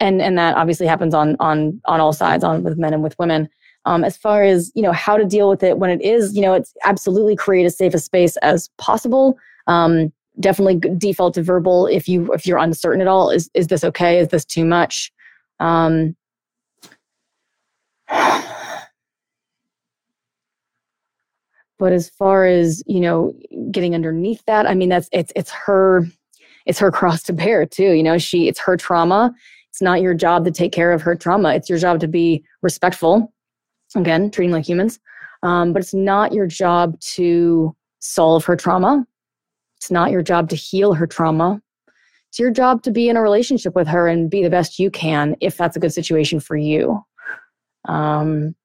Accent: American